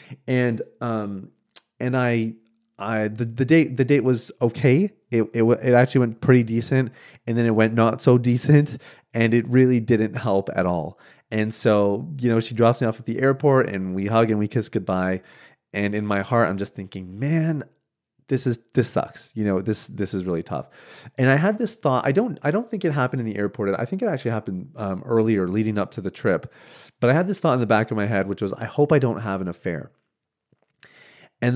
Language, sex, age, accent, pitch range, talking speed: English, male, 30-49, American, 100-125 Hz, 225 wpm